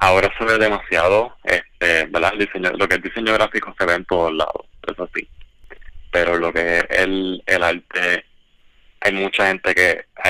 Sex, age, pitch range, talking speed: male, 20-39, 90-100 Hz, 190 wpm